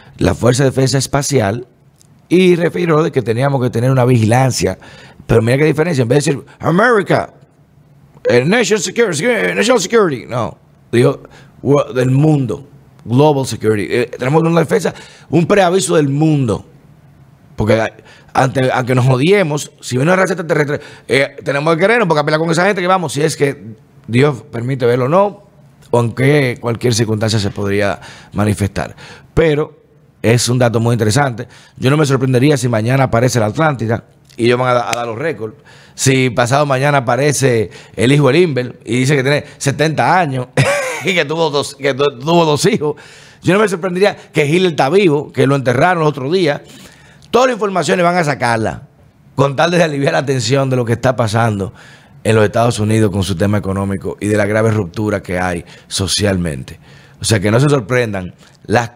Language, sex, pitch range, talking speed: Spanish, male, 120-155 Hz, 180 wpm